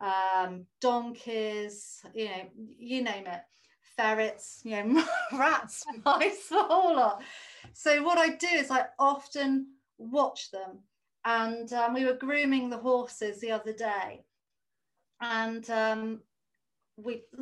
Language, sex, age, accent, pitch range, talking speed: English, female, 40-59, British, 205-260 Hz, 125 wpm